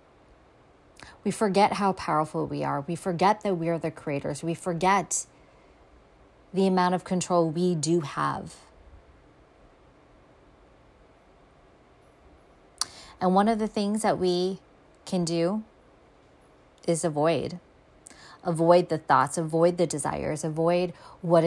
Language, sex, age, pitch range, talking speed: English, female, 30-49, 150-180 Hz, 115 wpm